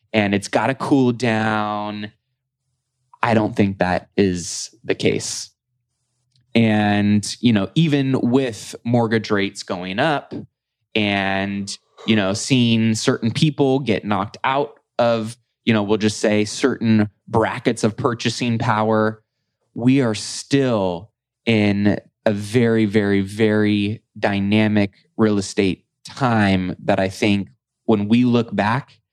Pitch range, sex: 105-125 Hz, male